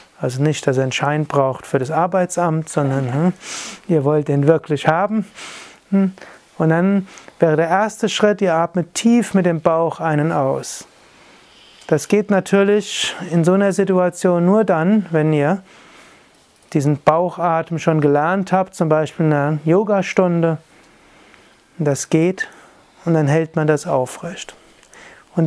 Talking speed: 145 wpm